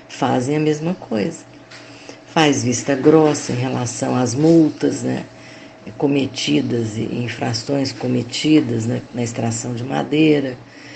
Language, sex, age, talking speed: Portuguese, female, 50-69, 110 wpm